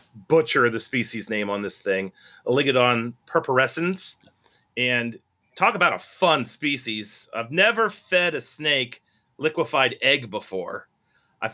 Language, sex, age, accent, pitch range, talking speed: English, male, 30-49, American, 115-150 Hz, 125 wpm